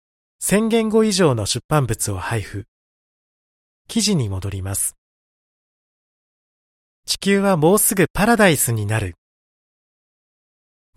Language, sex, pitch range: Japanese, male, 105-175 Hz